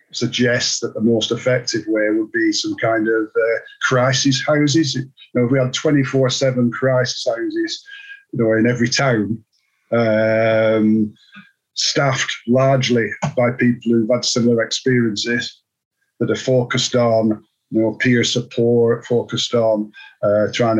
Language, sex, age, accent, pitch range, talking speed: English, male, 50-69, British, 110-125 Hz, 140 wpm